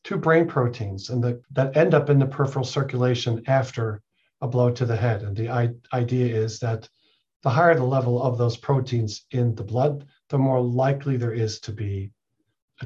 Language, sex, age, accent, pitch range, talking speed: English, male, 40-59, American, 115-135 Hz, 195 wpm